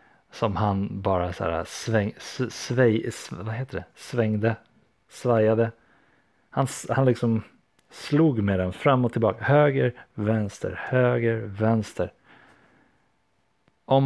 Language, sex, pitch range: Swedish, male, 100-120 Hz